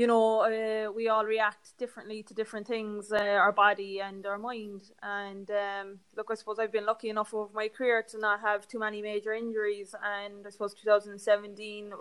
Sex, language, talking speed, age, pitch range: female, English, 195 wpm, 20-39, 205-220 Hz